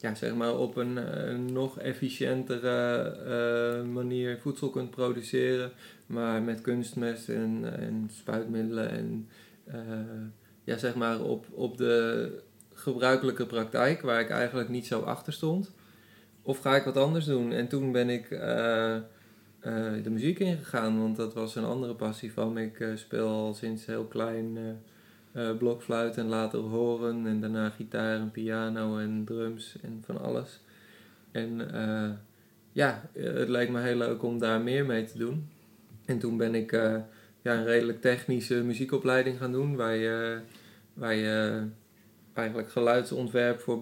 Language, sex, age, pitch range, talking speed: Dutch, male, 20-39, 110-125 Hz, 155 wpm